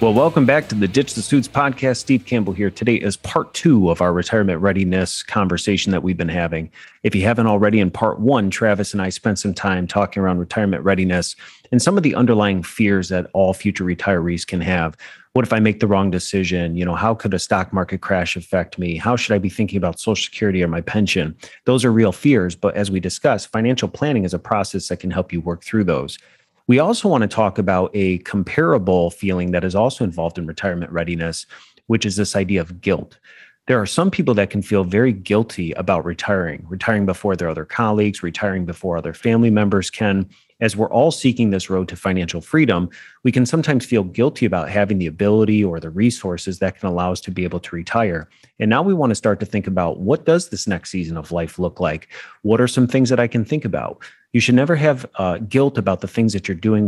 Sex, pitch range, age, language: male, 90-115 Hz, 30-49, English